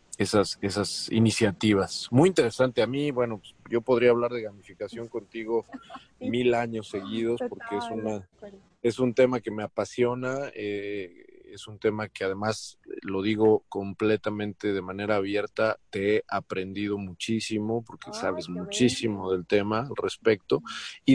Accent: Mexican